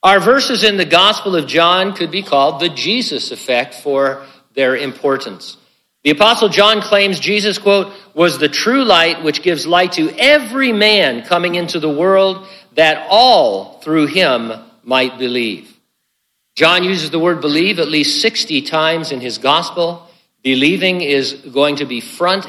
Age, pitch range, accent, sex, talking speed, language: 50-69, 135-180 Hz, American, male, 160 wpm, English